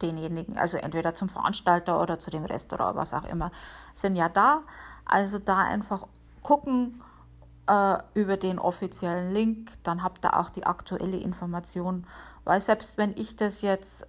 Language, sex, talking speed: German, female, 160 wpm